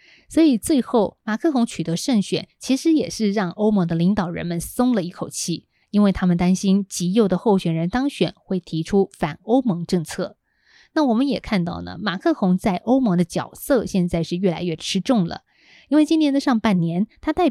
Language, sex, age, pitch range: Chinese, female, 20-39, 175-235 Hz